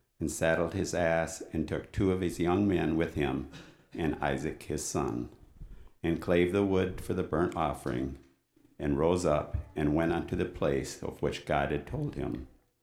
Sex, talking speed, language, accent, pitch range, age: male, 180 wpm, English, American, 75-95 Hz, 60-79